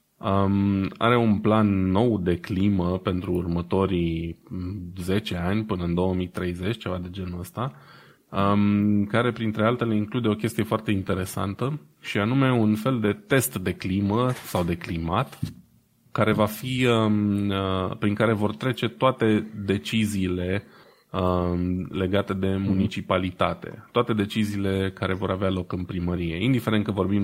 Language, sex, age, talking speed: Romanian, male, 20-39, 130 wpm